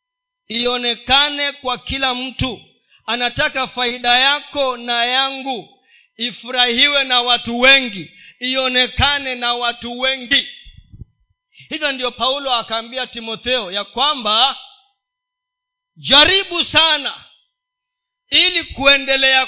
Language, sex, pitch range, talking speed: Swahili, male, 185-295 Hz, 85 wpm